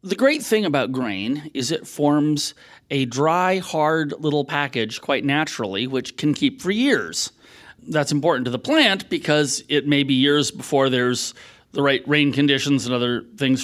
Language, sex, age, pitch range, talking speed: English, male, 40-59, 130-175 Hz, 170 wpm